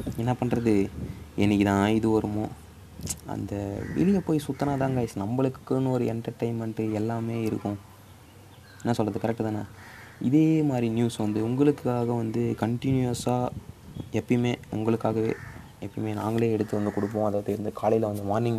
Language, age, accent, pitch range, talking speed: Tamil, 20-39, native, 105-130 Hz, 125 wpm